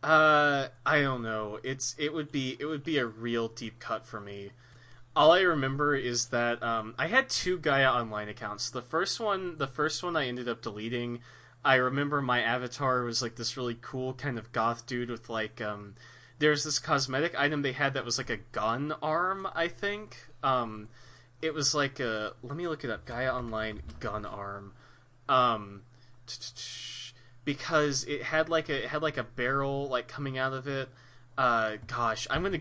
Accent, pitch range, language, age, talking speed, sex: American, 115-145 Hz, English, 20-39, 190 wpm, male